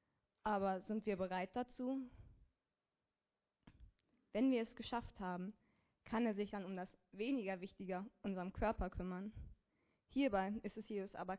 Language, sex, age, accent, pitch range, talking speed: German, female, 20-39, German, 195-235 Hz, 135 wpm